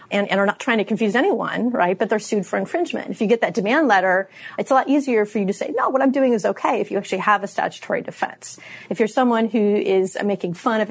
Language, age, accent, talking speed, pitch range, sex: English, 30-49, American, 270 wpm, 190-230 Hz, female